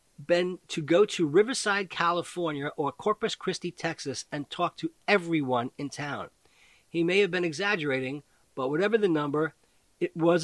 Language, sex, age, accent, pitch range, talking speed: English, male, 40-59, American, 140-180 Hz, 155 wpm